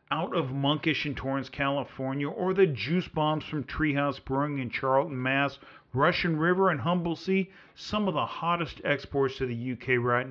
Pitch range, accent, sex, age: 140-180 Hz, American, male, 50-69